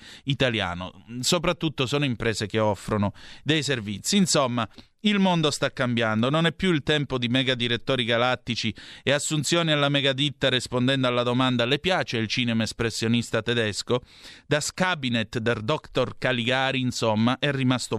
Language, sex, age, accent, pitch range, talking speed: Italian, male, 30-49, native, 115-145 Hz, 145 wpm